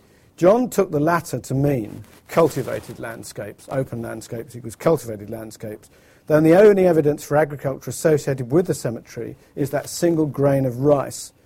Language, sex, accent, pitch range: English, male, British, 120-150 Hz